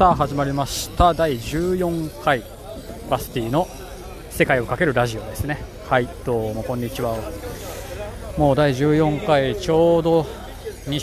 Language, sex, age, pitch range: Japanese, male, 20-39, 110-150 Hz